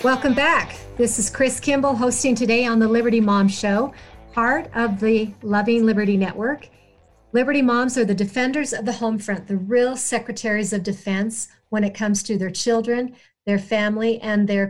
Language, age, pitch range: English, 50-69, 205-235 Hz